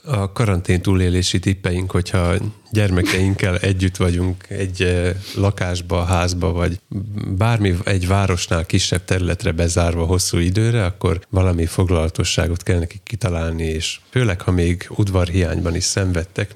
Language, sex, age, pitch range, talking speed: Hungarian, male, 30-49, 85-100 Hz, 120 wpm